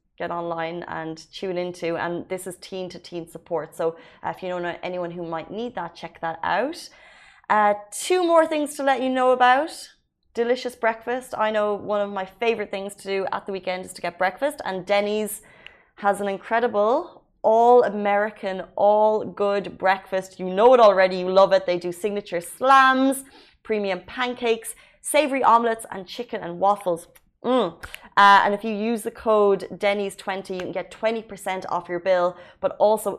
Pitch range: 175-225 Hz